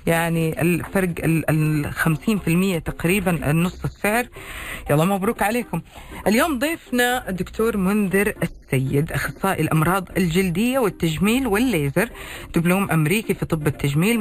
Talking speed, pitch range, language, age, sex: 105 wpm, 155-205 Hz, Arabic, 40-59, female